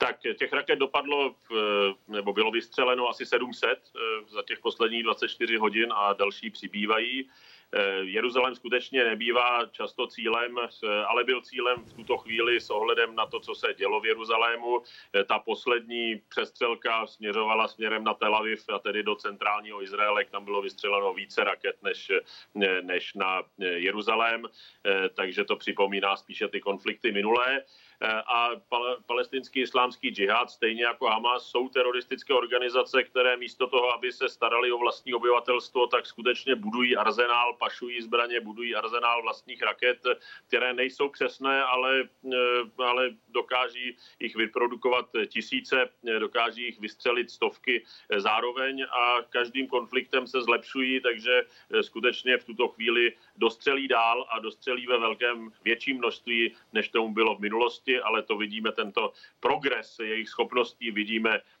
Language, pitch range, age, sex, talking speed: Czech, 115-130 Hz, 40-59, male, 135 wpm